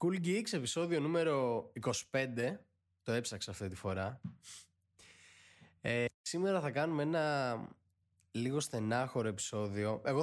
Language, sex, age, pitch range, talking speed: Greek, male, 20-39, 95-150 Hz, 110 wpm